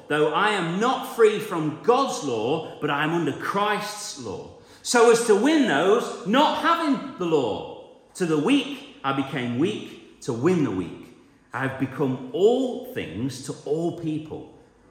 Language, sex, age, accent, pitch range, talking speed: English, male, 40-59, British, 105-155 Hz, 165 wpm